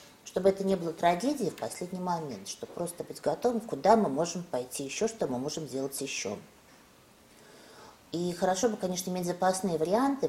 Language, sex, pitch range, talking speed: Russian, female, 140-195 Hz, 170 wpm